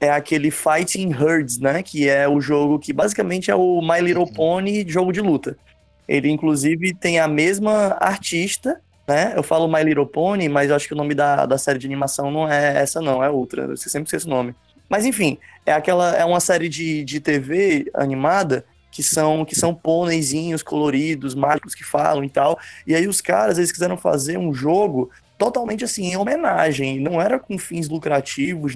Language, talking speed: Portuguese, 195 wpm